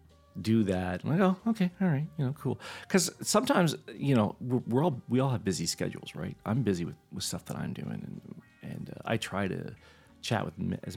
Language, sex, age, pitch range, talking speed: English, male, 40-59, 90-125 Hz, 225 wpm